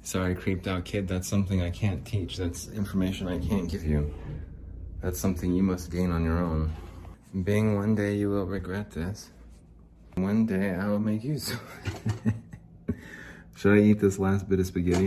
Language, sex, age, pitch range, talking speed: English, male, 30-49, 85-105 Hz, 180 wpm